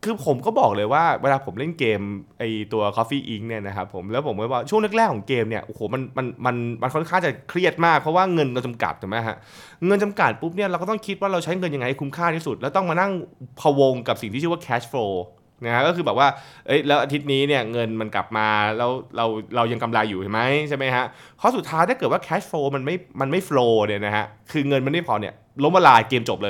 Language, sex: Thai, male